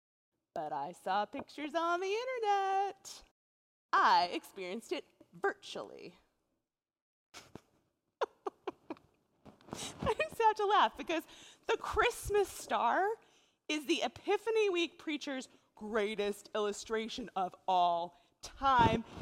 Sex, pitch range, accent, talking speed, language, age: female, 190-280 Hz, American, 95 wpm, English, 30-49